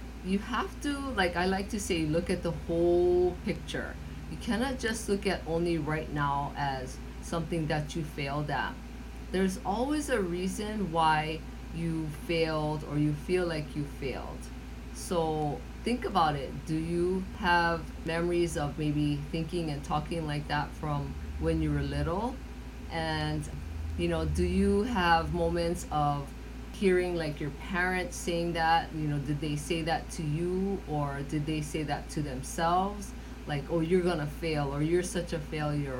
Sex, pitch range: female, 145-180 Hz